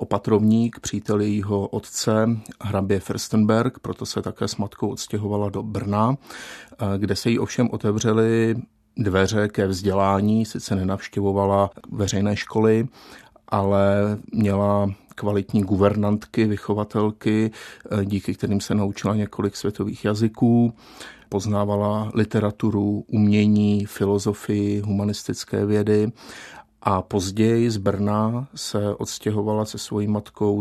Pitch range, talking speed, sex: 100-110 Hz, 105 wpm, male